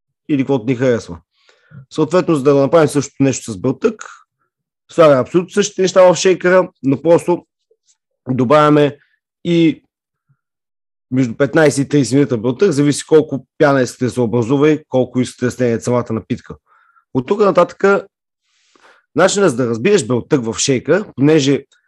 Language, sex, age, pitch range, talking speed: Bulgarian, male, 30-49, 130-165 Hz, 145 wpm